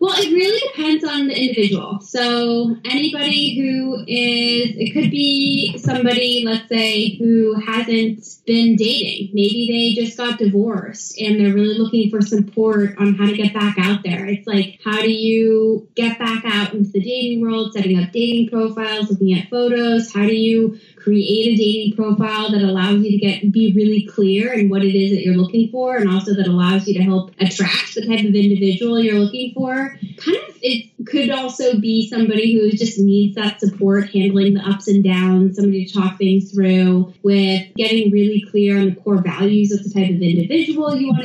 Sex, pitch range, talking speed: female, 200-230 Hz, 195 wpm